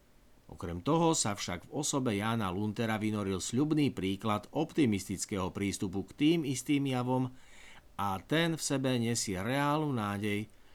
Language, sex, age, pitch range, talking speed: Slovak, male, 60-79, 95-120 Hz, 135 wpm